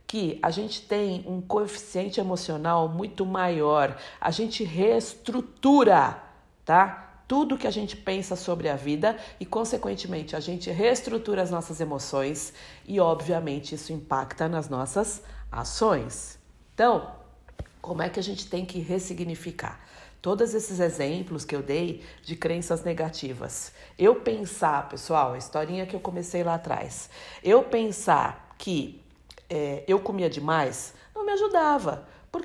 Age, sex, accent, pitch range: 50-69, female, Brazilian, 150-200 Hz